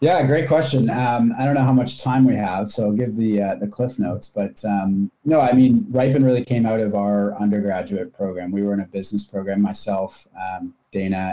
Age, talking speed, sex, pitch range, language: 30-49, 215 wpm, male, 100-125 Hz, English